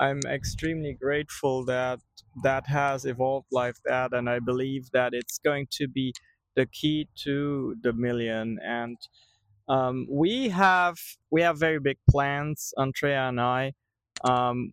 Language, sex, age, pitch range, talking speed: English, male, 20-39, 125-150 Hz, 145 wpm